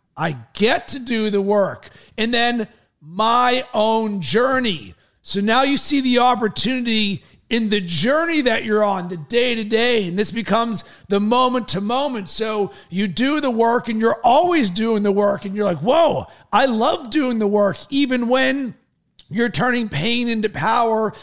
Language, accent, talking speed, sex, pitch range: English, American, 160 wpm, male, 205-240 Hz